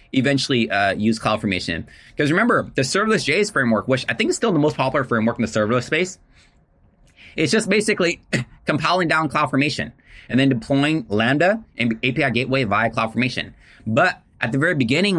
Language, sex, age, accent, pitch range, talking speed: English, male, 20-39, American, 115-150 Hz, 170 wpm